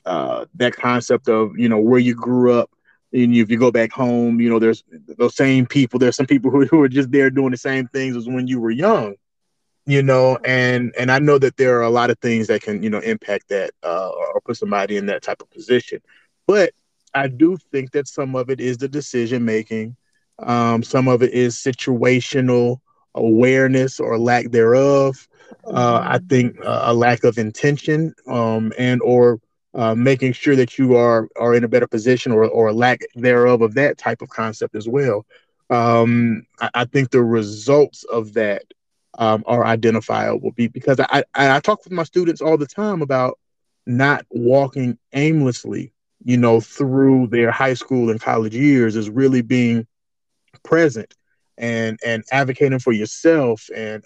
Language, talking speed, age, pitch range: English, 185 wpm, 30-49, 120-135 Hz